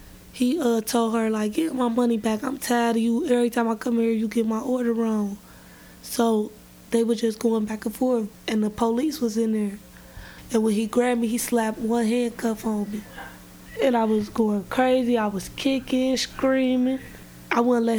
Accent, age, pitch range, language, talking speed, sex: American, 20-39, 220-235 Hz, English, 200 wpm, female